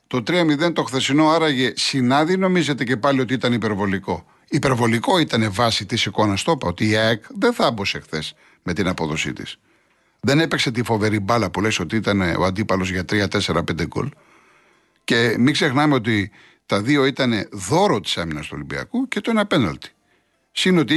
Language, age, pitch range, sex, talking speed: Greek, 60-79, 110-155 Hz, male, 175 wpm